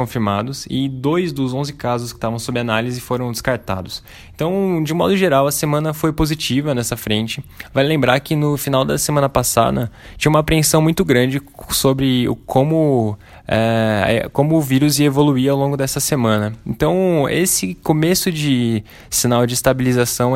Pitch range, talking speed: 115-140 Hz, 160 wpm